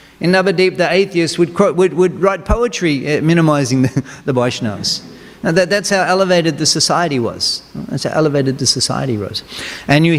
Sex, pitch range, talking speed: male, 135-175 Hz, 165 wpm